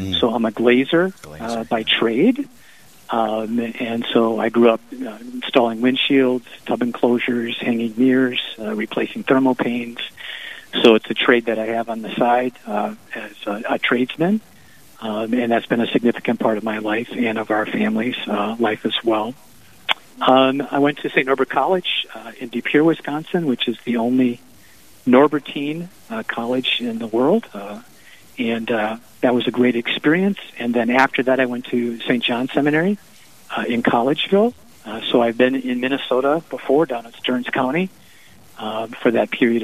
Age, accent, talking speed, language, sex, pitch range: 50-69, American, 175 wpm, English, male, 115-145 Hz